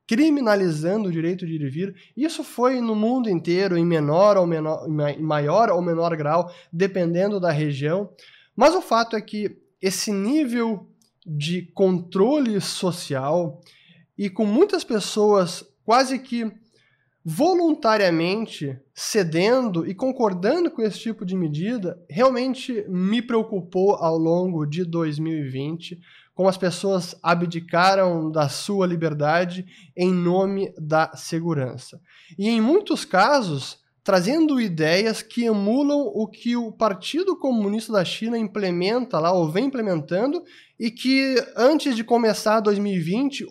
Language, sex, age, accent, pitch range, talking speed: Portuguese, male, 20-39, Brazilian, 170-230 Hz, 125 wpm